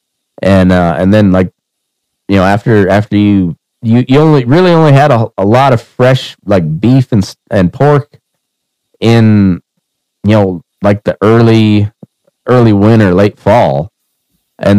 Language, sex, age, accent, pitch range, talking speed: English, male, 30-49, American, 95-125 Hz, 150 wpm